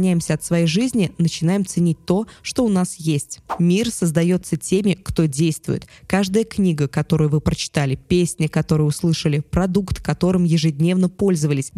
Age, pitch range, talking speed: 20-39, 160-195 Hz, 140 wpm